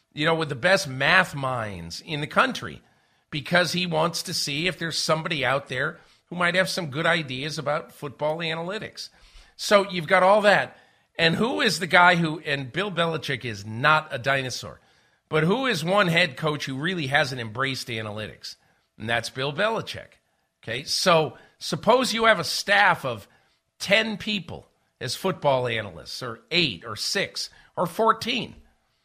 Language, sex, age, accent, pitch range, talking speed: English, male, 50-69, American, 130-175 Hz, 165 wpm